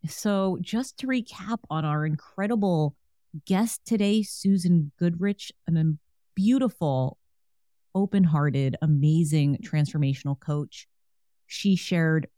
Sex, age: female, 30-49